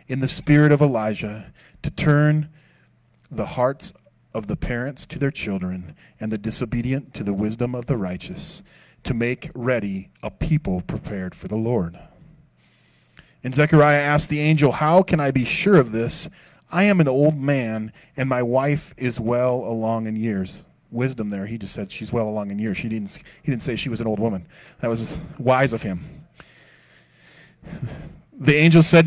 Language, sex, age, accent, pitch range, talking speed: English, male, 30-49, American, 105-140 Hz, 180 wpm